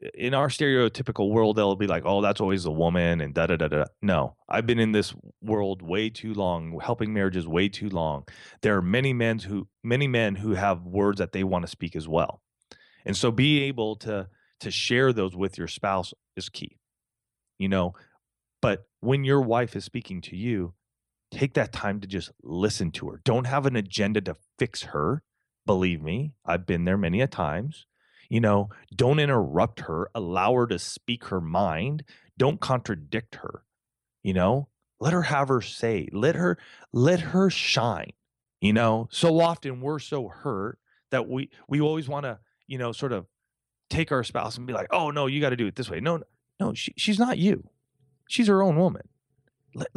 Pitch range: 100-145 Hz